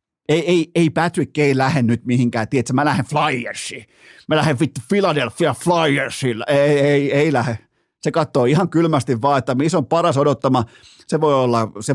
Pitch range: 120-150 Hz